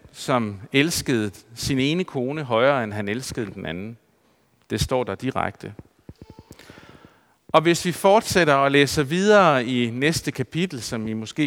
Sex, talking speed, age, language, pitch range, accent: male, 145 wpm, 50-69, Danish, 115-155 Hz, native